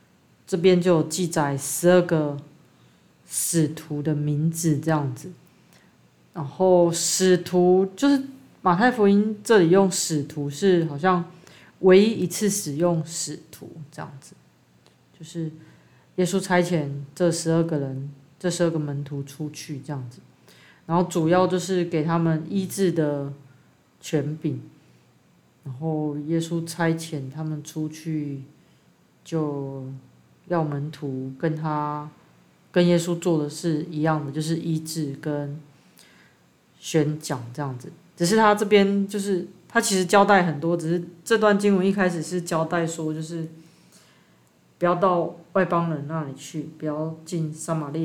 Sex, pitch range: female, 150-180 Hz